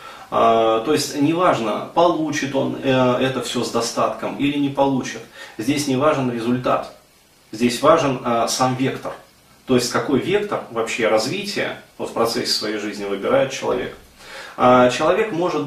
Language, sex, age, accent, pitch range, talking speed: Russian, male, 20-39, native, 115-140 Hz, 130 wpm